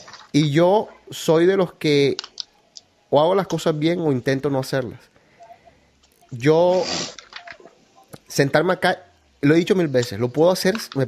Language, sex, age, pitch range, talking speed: Spanish, male, 30-49, 130-170 Hz, 145 wpm